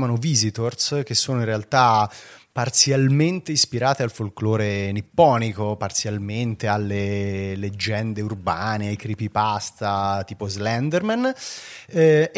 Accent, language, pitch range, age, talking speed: native, Italian, 100-140 Hz, 30-49, 90 wpm